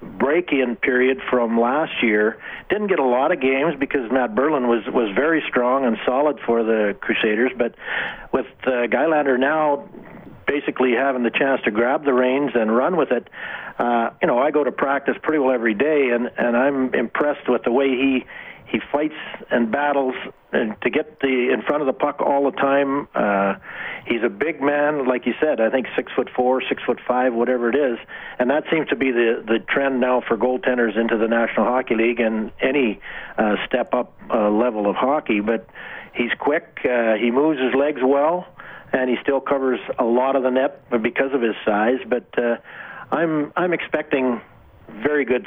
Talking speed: 200 wpm